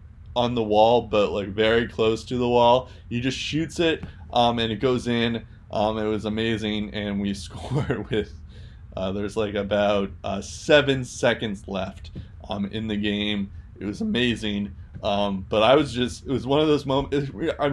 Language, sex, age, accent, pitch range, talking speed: English, male, 20-39, American, 100-120 Hz, 185 wpm